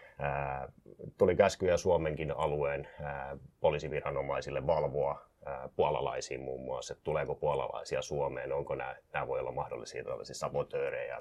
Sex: male